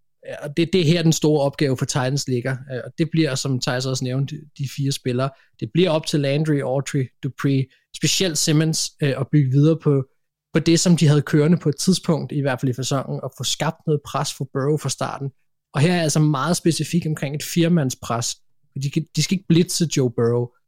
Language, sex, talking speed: Danish, male, 220 wpm